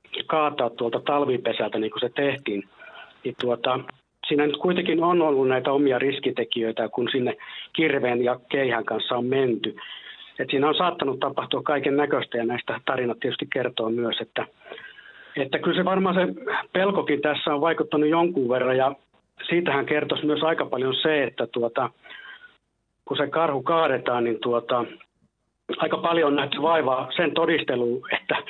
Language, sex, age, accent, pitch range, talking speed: Finnish, male, 60-79, native, 125-155 Hz, 155 wpm